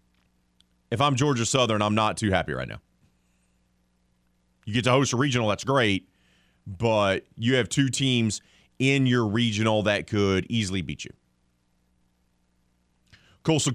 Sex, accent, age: male, American, 30-49